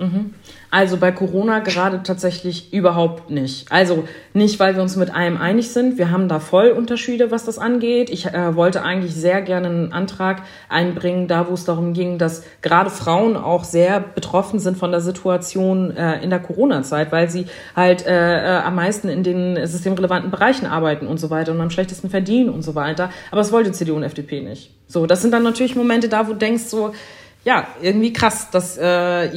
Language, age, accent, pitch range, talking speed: German, 30-49, German, 160-190 Hz, 200 wpm